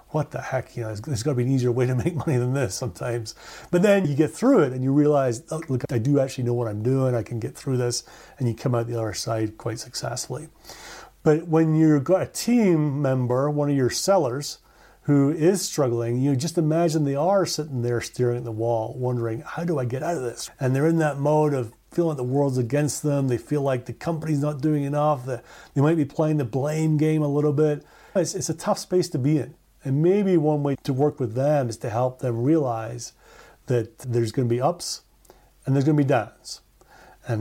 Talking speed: 235 wpm